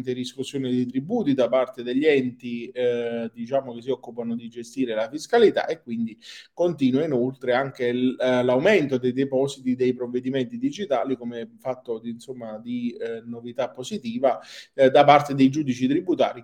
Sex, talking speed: male, 155 wpm